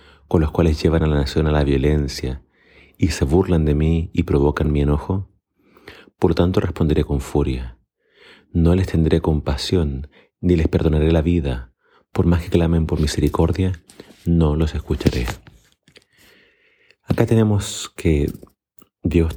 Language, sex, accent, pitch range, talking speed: Spanish, male, Argentinian, 75-90 Hz, 145 wpm